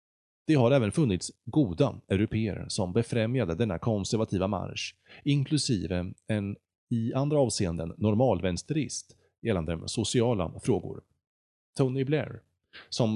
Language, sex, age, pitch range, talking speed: Swedish, male, 30-49, 95-125 Hz, 105 wpm